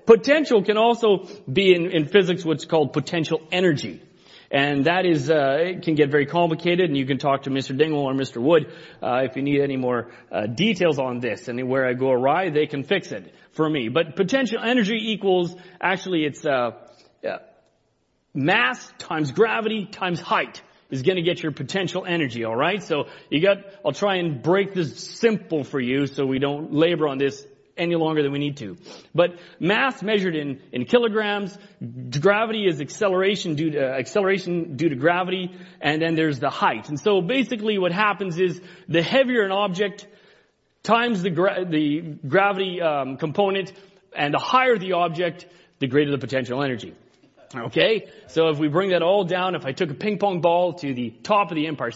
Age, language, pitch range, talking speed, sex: 30-49, English, 145-195 Hz, 190 wpm, male